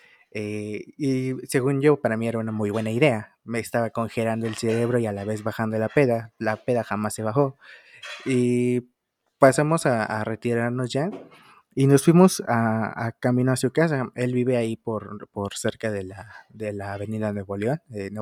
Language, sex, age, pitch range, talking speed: Spanish, male, 20-39, 110-150 Hz, 190 wpm